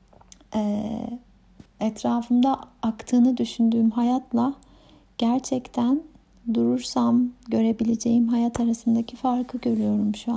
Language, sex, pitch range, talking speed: Turkish, female, 215-250 Hz, 75 wpm